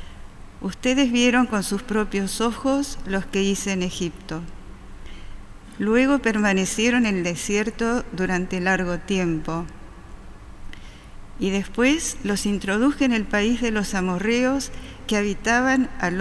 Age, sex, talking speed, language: 40-59, female, 120 wpm, Spanish